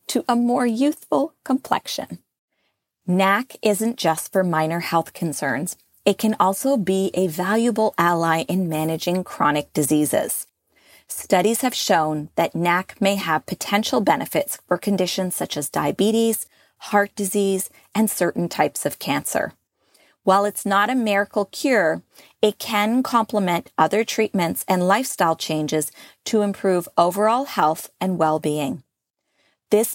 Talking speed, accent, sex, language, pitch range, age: 130 wpm, American, female, English, 170-220 Hz, 30-49